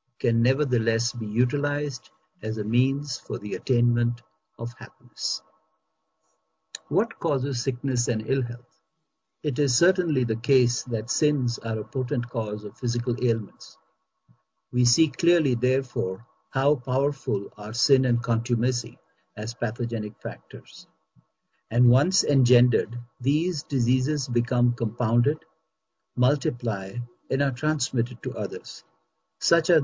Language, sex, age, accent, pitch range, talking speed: Hindi, male, 60-79, native, 115-140 Hz, 120 wpm